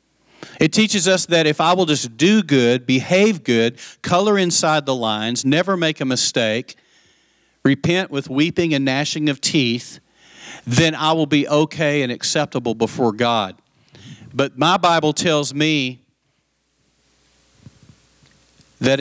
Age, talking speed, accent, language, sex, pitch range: 40-59, 135 wpm, American, English, male, 115-155 Hz